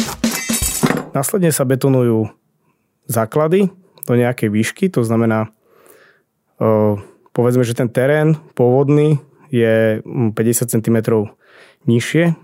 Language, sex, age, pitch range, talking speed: Slovak, male, 20-39, 115-140 Hz, 85 wpm